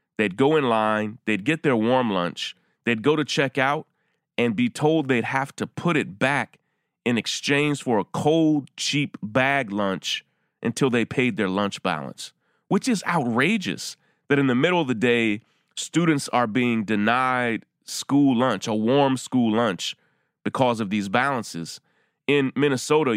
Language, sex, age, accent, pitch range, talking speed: English, male, 30-49, American, 105-140 Hz, 160 wpm